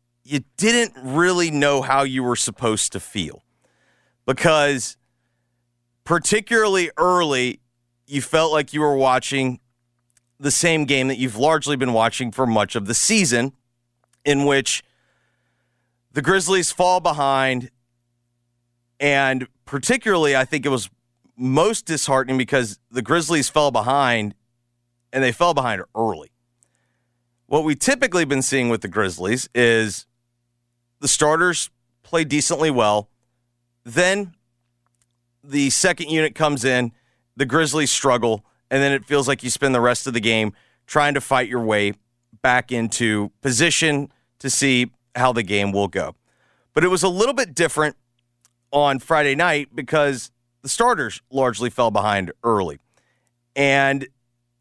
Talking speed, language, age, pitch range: 135 wpm, English, 30-49, 120-150 Hz